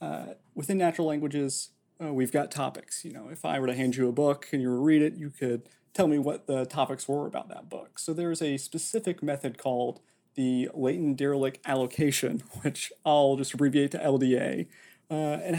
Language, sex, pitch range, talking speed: English, male, 135-160 Hz, 205 wpm